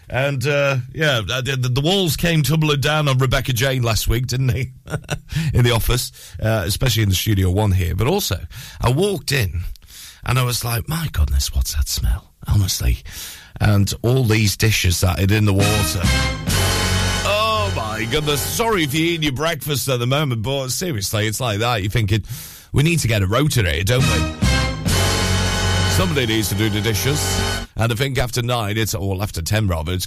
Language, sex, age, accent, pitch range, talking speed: English, male, 40-59, British, 95-135 Hz, 190 wpm